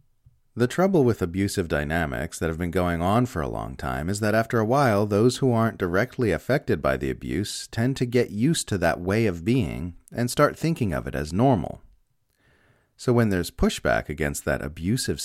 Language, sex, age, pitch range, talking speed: English, male, 30-49, 90-125 Hz, 195 wpm